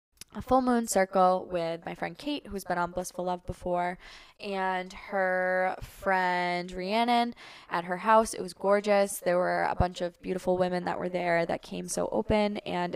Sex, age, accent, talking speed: female, 10-29, American, 180 wpm